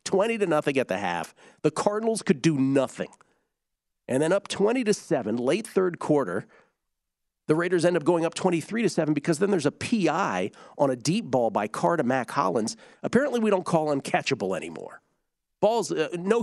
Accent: American